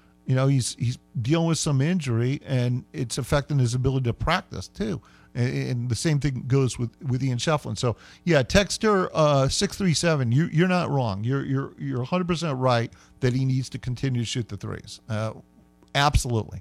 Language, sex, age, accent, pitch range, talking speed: English, male, 50-69, American, 115-155 Hz, 190 wpm